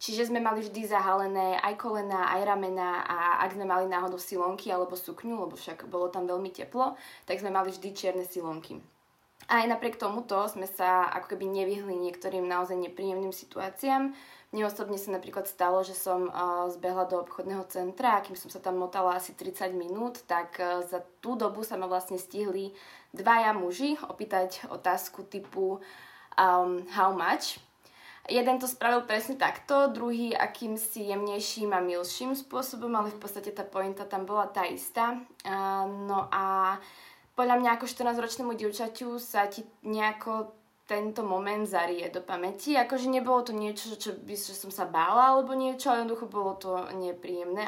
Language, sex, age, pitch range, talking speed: Slovak, female, 20-39, 185-230 Hz, 160 wpm